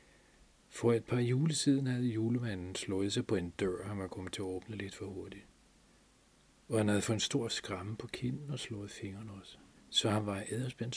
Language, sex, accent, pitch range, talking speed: Danish, male, native, 100-120 Hz, 210 wpm